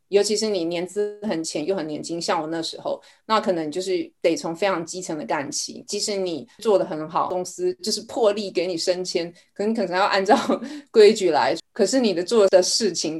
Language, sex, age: Chinese, female, 20-39